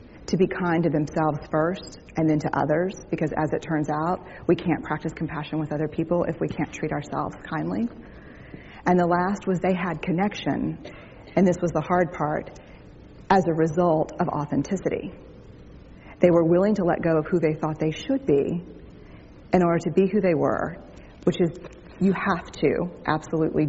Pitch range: 155-180 Hz